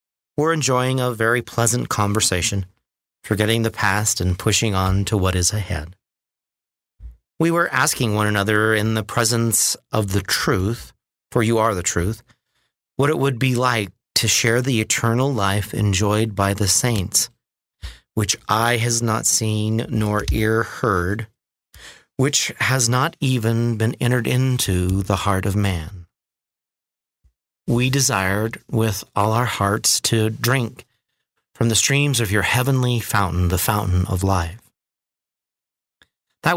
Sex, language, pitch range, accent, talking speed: male, English, 100-125 Hz, American, 140 wpm